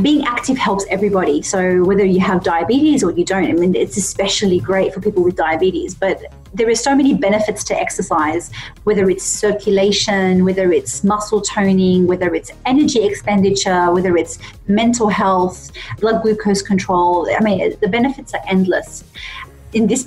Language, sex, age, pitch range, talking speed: English, female, 30-49, 185-210 Hz, 165 wpm